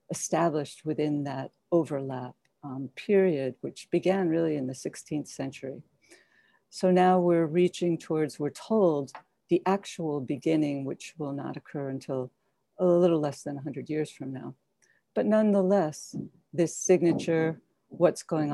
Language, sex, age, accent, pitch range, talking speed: English, female, 70-89, American, 145-180 Hz, 135 wpm